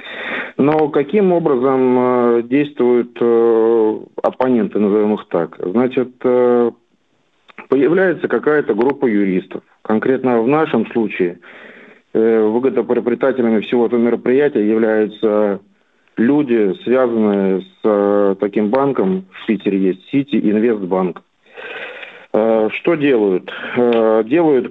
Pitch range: 110-130 Hz